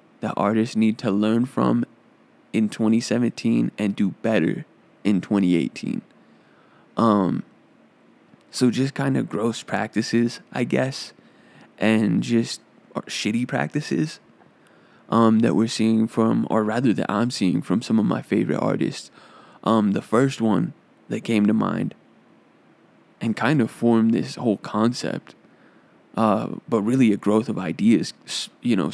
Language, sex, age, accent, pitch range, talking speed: English, male, 20-39, American, 100-115 Hz, 135 wpm